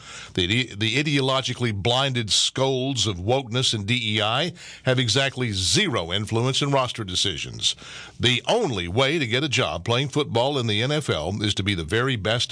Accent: American